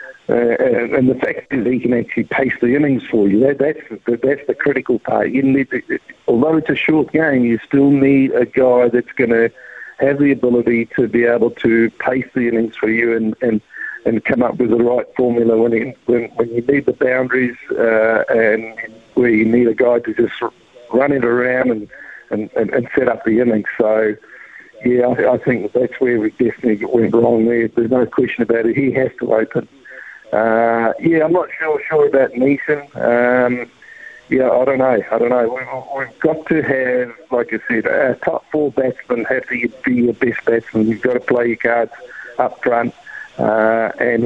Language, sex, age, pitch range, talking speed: English, male, 50-69, 115-135 Hz, 200 wpm